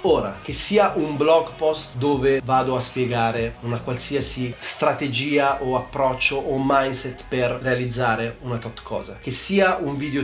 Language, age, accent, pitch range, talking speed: Italian, 30-49, native, 120-155 Hz, 150 wpm